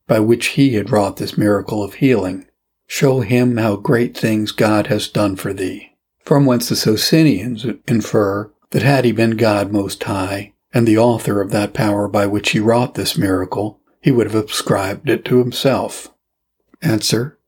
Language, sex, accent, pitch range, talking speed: English, male, American, 105-130 Hz, 175 wpm